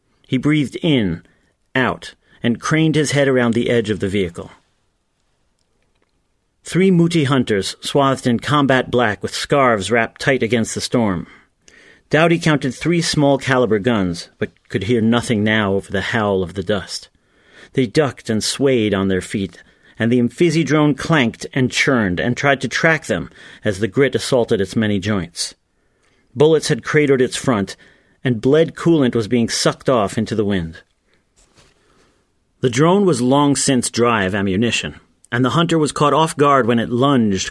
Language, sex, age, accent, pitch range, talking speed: English, male, 40-59, American, 110-145 Hz, 165 wpm